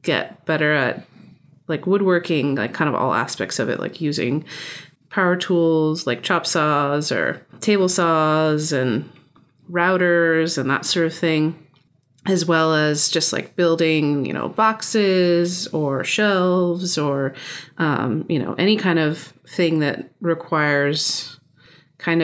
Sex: female